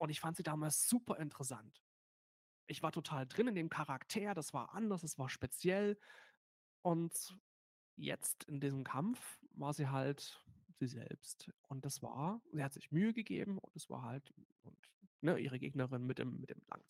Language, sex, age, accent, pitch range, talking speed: German, male, 30-49, German, 140-195 Hz, 180 wpm